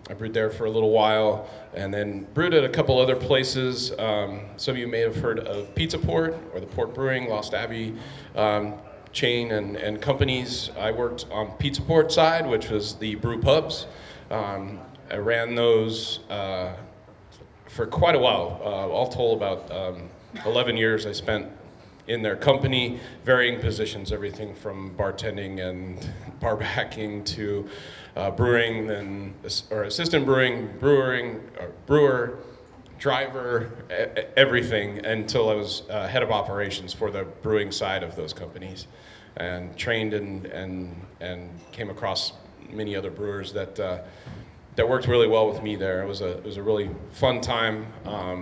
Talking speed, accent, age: 160 wpm, American, 30-49